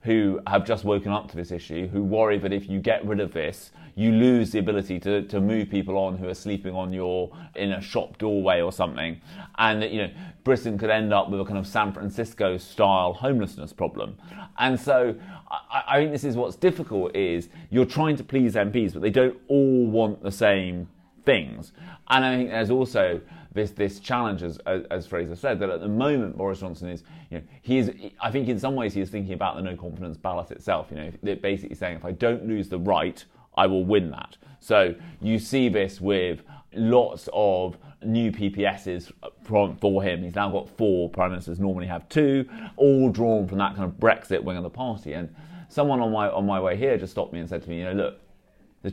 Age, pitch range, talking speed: 30-49, 95-115 Hz, 220 wpm